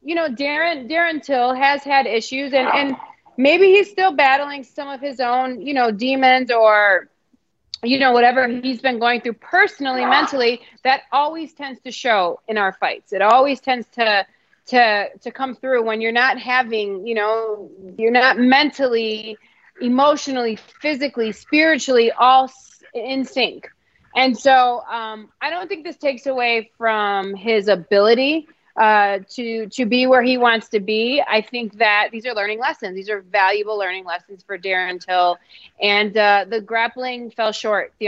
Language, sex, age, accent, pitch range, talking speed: English, female, 30-49, American, 210-260 Hz, 165 wpm